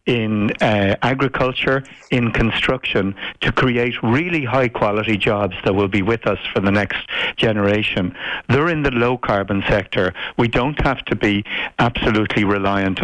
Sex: male